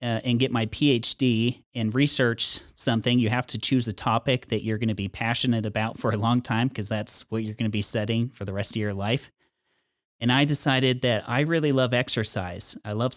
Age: 30-49